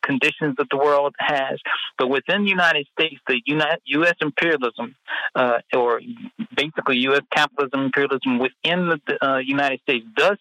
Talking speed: 150 wpm